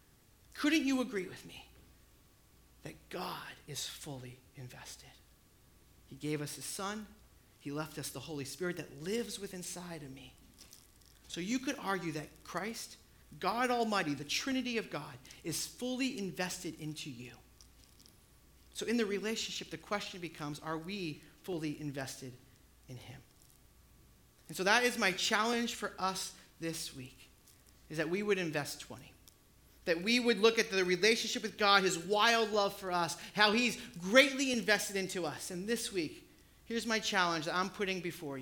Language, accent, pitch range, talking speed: English, American, 145-210 Hz, 160 wpm